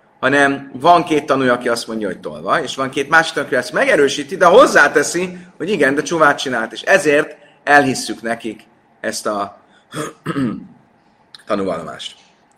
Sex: male